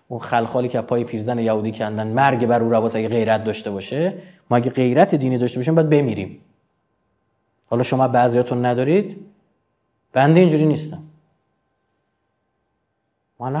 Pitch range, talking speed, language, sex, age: 120-175 Hz, 130 wpm, Persian, male, 30-49